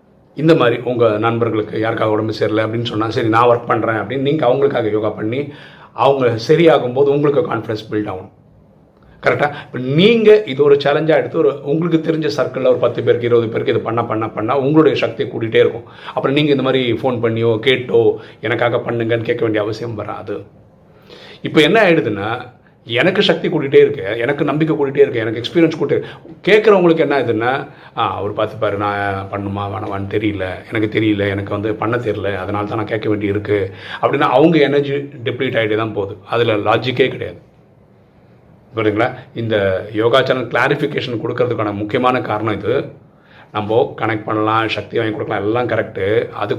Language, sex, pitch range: Tamil, male, 110-145 Hz